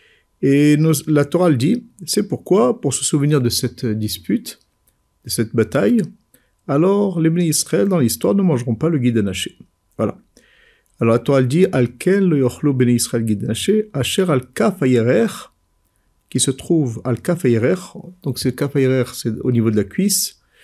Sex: male